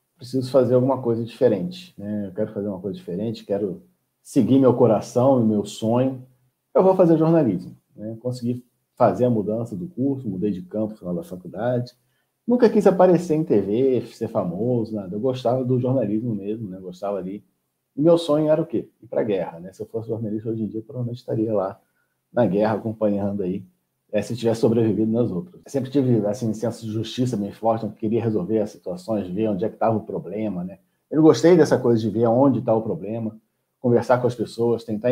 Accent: Brazilian